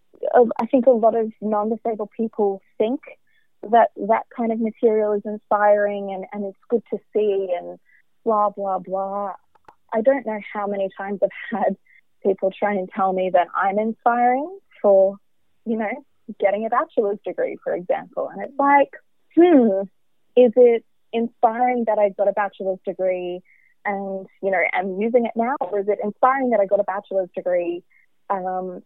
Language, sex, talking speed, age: English, female, 170 wpm, 20-39